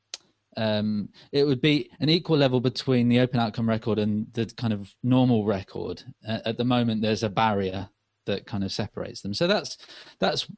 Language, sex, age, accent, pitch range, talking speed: English, male, 20-39, British, 100-120 Hz, 185 wpm